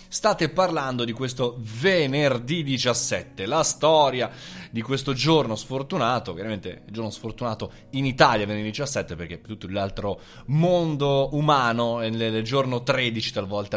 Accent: native